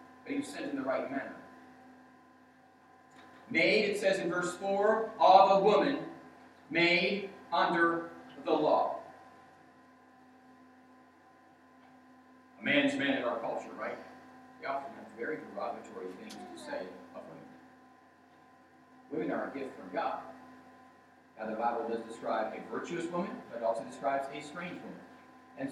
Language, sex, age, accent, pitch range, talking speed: English, male, 40-59, American, 160-255 Hz, 140 wpm